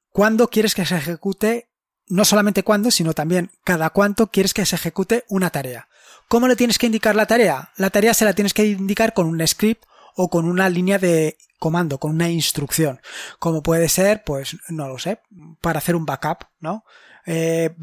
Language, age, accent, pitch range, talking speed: Spanish, 20-39, Spanish, 165-215 Hz, 190 wpm